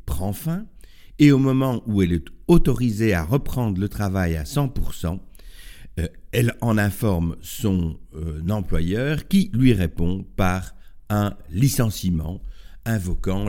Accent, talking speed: French, 130 wpm